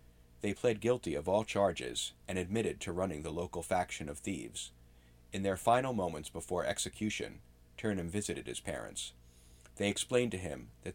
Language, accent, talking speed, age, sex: English, American, 165 wpm, 40-59, male